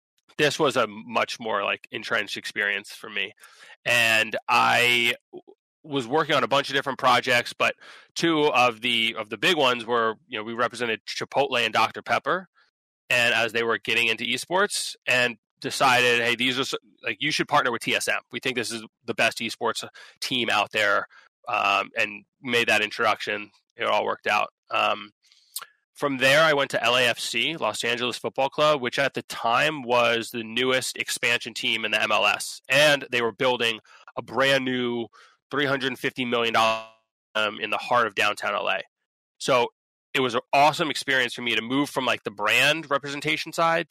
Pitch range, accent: 115-145 Hz, American